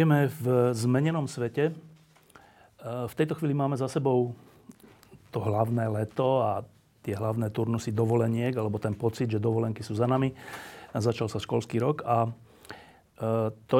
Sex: male